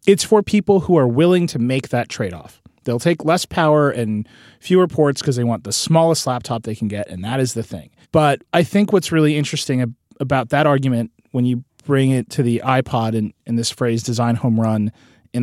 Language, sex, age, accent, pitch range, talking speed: English, male, 30-49, American, 115-150 Hz, 220 wpm